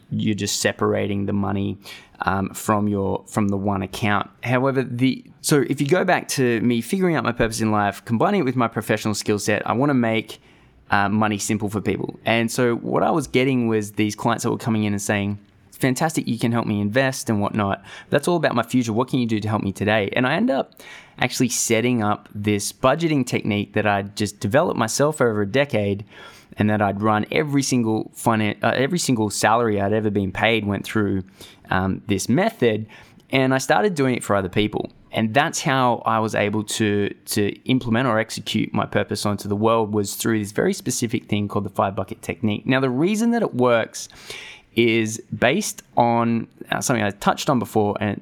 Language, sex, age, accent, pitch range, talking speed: English, male, 20-39, Australian, 105-125 Hz, 210 wpm